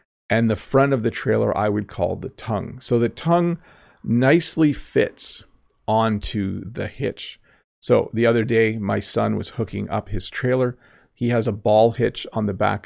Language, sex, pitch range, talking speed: English, male, 105-125 Hz, 175 wpm